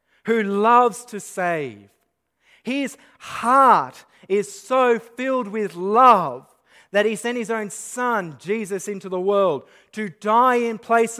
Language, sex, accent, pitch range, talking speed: English, male, Australian, 155-215 Hz, 135 wpm